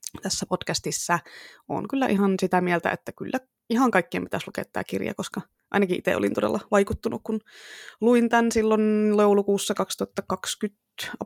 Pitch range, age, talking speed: 175-210 Hz, 20-39, 145 wpm